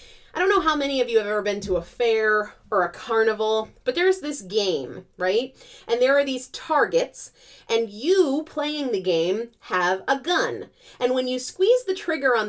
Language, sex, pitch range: English, female, 230-375 Hz